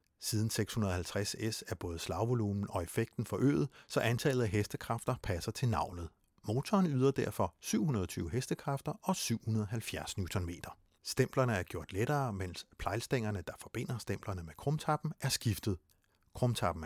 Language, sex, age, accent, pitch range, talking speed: Danish, male, 60-79, native, 95-135 Hz, 130 wpm